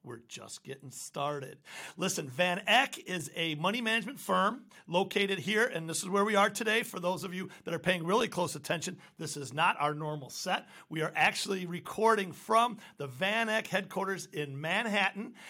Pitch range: 160-205 Hz